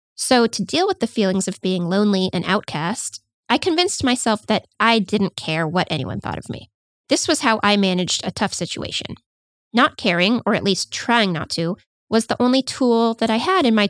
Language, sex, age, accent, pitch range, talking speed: English, female, 20-39, American, 185-240 Hz, 205 wpm